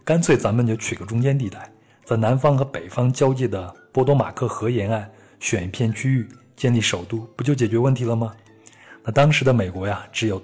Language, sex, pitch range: Chinese, male, 100-125 Hz